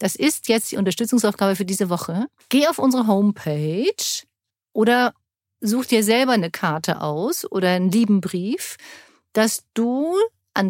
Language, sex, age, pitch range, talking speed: German, female, 50-69, 195-245 Hz, 145 wpm